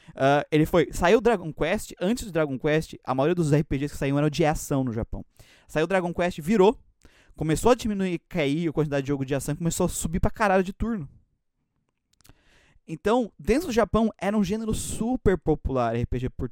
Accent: Brazilian